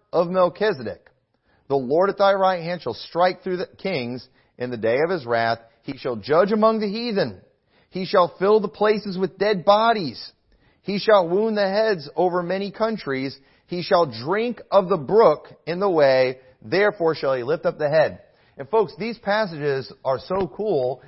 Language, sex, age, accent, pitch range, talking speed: English, male, 40-59, American, 140-195 Hz, 180 wpm